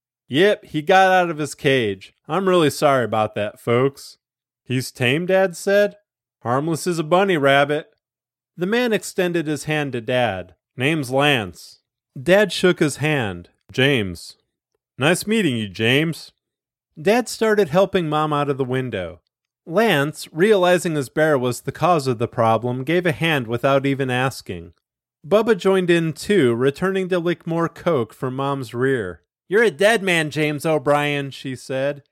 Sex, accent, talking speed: male, American, 155 wpm